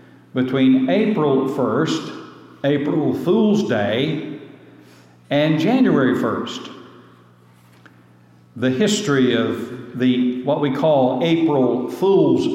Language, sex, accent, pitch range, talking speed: English, male, American, 120-160 Hz, 85 wpm